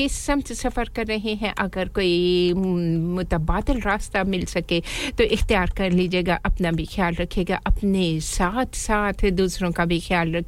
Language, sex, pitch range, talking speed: English, female, 170-215 Hz, 155 wpm